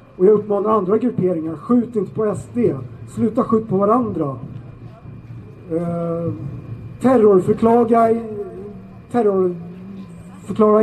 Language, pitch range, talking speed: Swedish, 145-225 Hz, 90 wpm